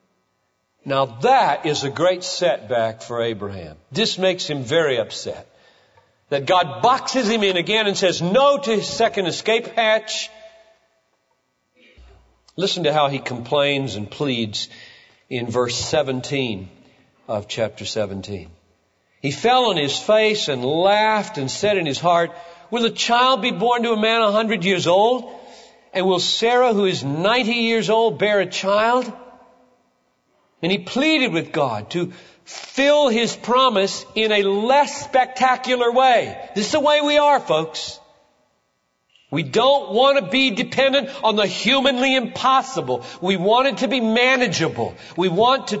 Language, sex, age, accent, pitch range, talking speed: Hindi, male, 50-69, American, 150-245 Hz, 150 wpm